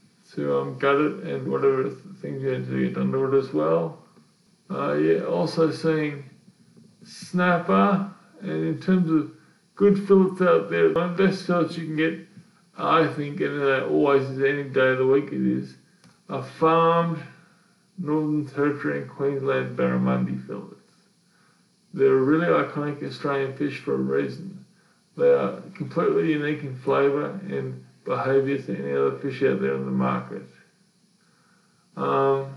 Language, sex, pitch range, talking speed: English, male, 135-180 Hz, 155 wpm